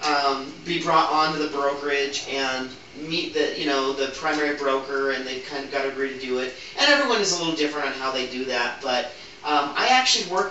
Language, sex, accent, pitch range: English, male, American, 135-190 Hz